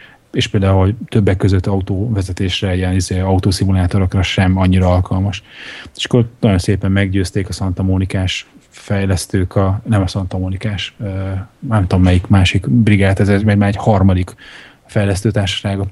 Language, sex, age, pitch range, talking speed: Hungarian, male, 30-49, 95-110 Hz, 130 wpm